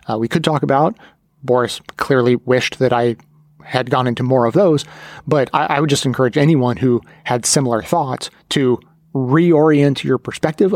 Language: English